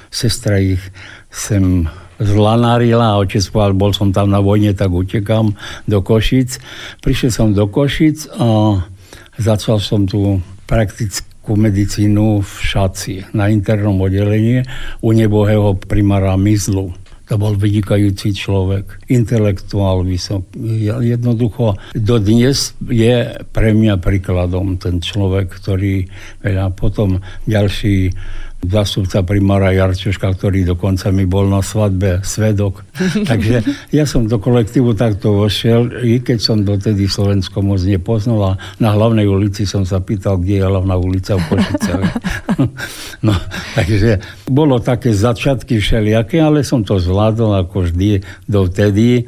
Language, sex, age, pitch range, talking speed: Slovak, male, 60-79, 95-115 Hz, 125 wpm